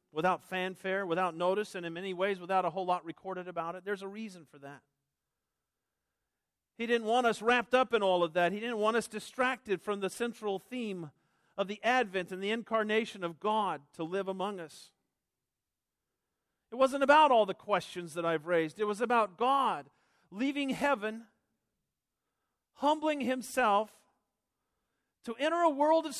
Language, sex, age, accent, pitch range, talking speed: English, male, 50-69, American, 180-235 Hz, 165 wpm